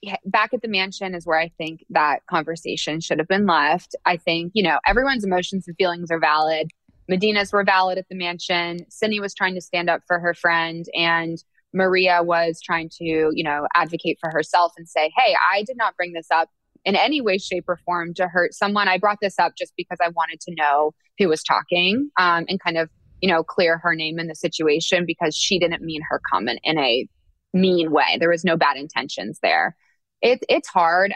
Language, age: English, 20-39